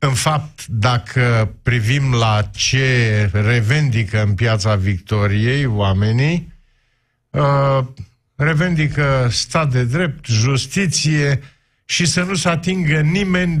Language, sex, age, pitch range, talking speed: Romanian, male, 50-69, 115-150 Hz, 100 wpm